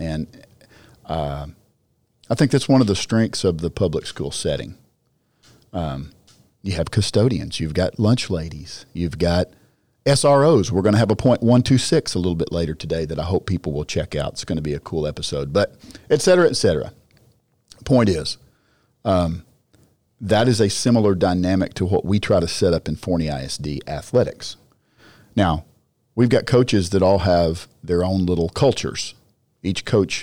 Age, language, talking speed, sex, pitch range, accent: 50-69, English, 180 wpm, male, 85-110 Hz, American